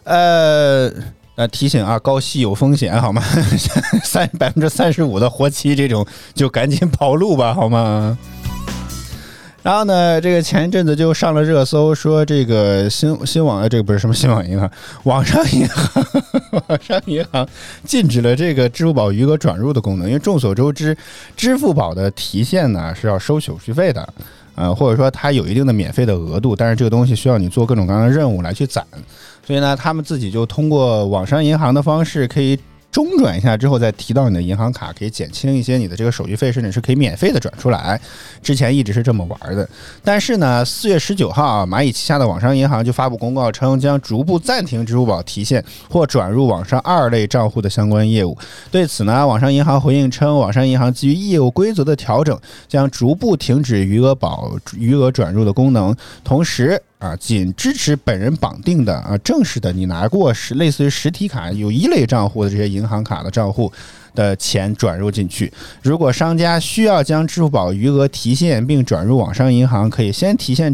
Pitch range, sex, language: 110-150 Hz, male, Chinese